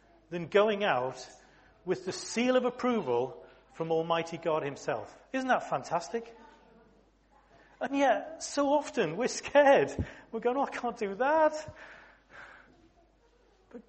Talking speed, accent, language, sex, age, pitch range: 120 wpm, British, English, male, 40-59, 160-245 Hz